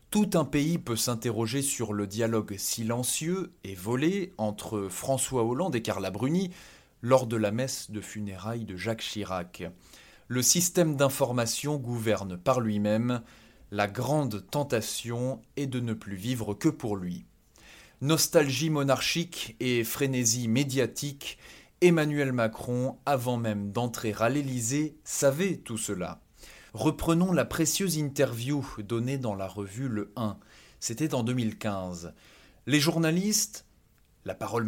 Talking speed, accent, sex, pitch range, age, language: 130 wpm, French, male, 110-150 Hz, 20-39, French